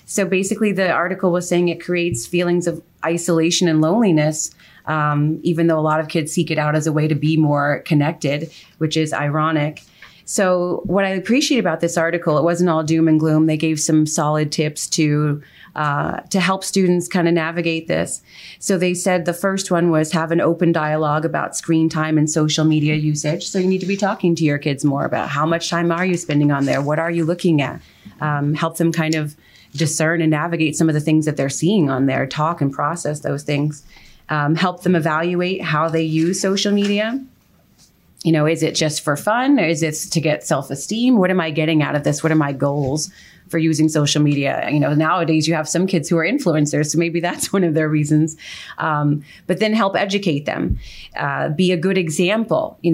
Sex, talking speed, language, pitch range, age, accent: female, 215 wpm, English, 155-175 Hz, 30-49, American